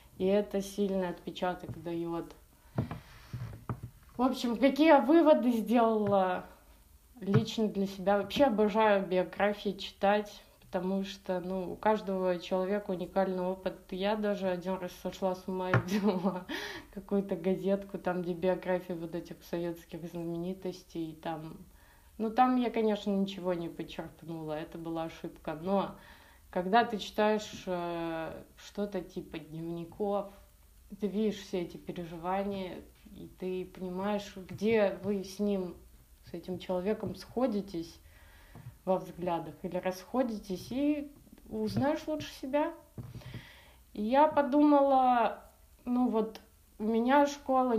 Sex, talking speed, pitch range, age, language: female, 120 wpm, 180-215 Hz, 20-39, Russian